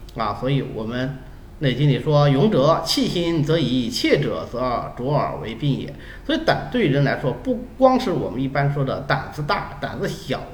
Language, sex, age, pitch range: Chinese, male, 30-49, 125-195 Hz